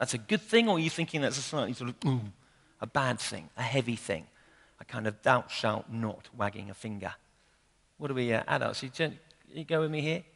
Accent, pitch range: British, 125-175 Hz